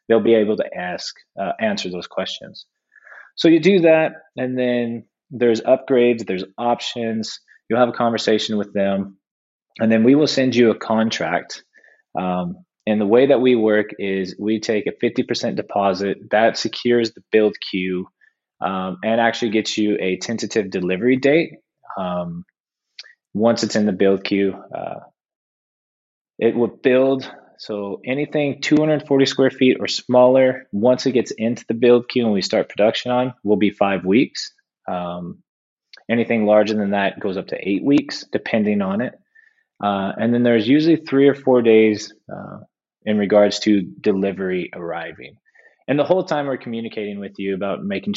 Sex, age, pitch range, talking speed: male, 20-39, 100-125 Hz, 165 wpm